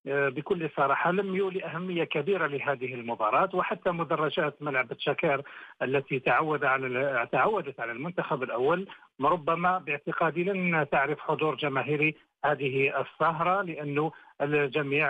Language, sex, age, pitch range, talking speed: Arabic, male, 50-69, 145-180 Hz, 115 wpm